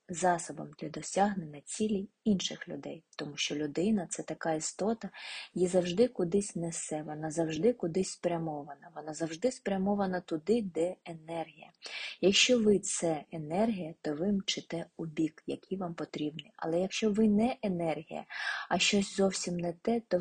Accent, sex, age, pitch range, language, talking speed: native, female, 20-39, 165-220 Hz, Ukrainian, 150 wpm